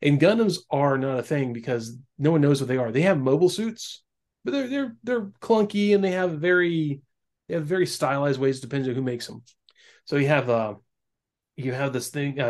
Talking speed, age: 215 wpm, 30-49